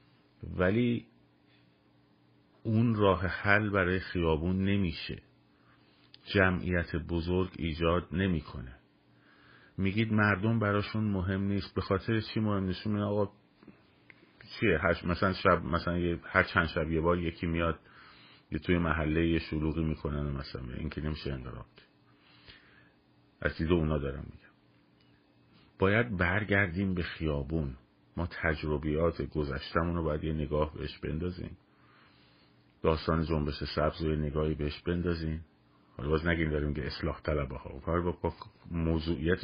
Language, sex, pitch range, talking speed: Persian, male, 75-95 Hz, 125 wpm